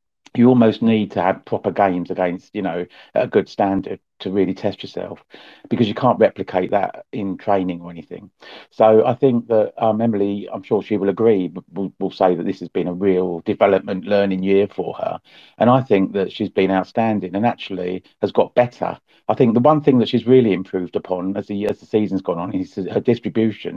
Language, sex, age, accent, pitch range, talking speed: English, male, 40-59, British, 95-115 Hz, 210 wpm